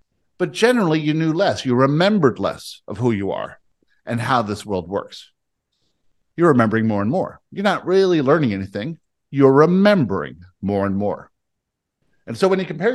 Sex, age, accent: male, 50-69, American